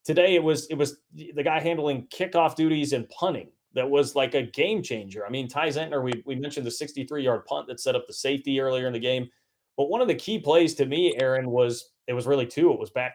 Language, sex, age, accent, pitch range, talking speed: English, male, 30-49, American, 125-155 Hz, 250 wpm